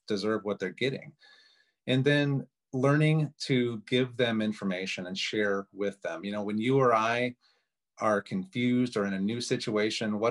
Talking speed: 170 wpm